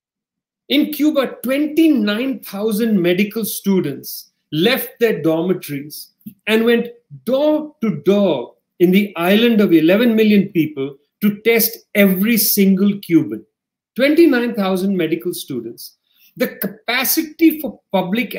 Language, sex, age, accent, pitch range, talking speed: English, male, 40-59, Indian, 180-230 Hz, 105 wpm